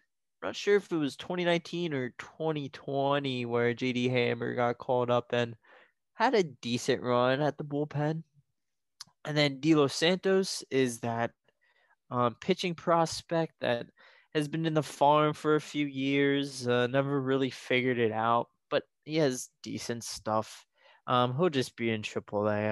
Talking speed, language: 155 wpm, English